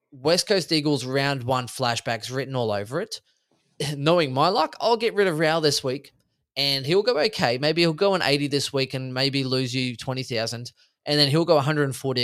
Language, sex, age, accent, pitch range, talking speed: English, male, 20-39, Australian, 130-165 Hz, 200 wpm